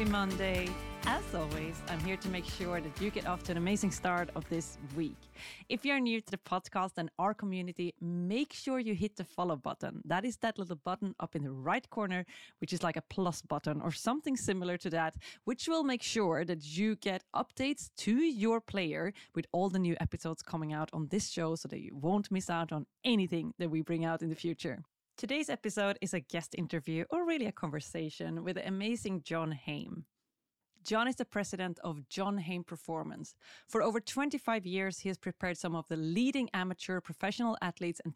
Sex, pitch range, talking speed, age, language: female, 165-210 Hz, 205 wpm, 30-49, English